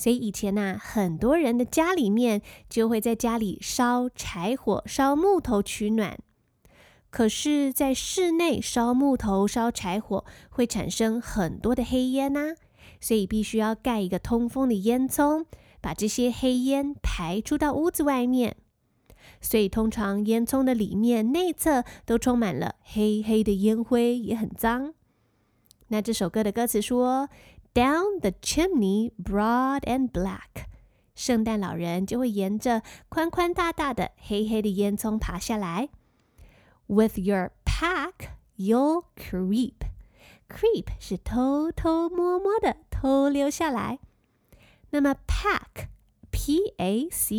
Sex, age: female, 20-39